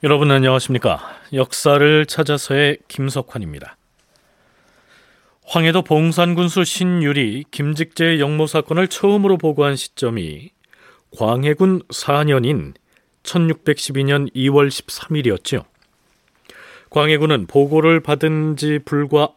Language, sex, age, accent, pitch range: Korean, male, 40-59, native, 125-160 Hz